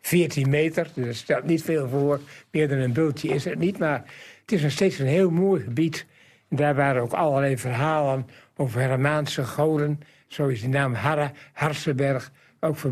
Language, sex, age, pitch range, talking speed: Dutch, male, 60-79, 130-160 Hz, 175 wpm